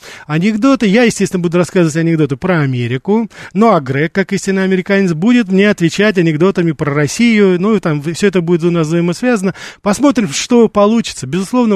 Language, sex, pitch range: Russian, male, 155-200 Hz